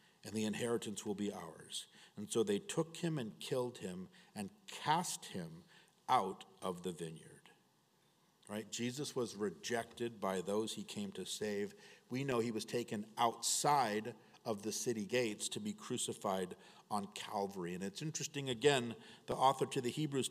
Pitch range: 115-170 Hz